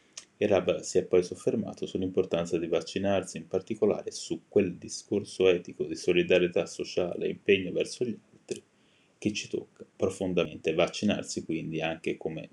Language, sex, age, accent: Italian, male, 20-39, native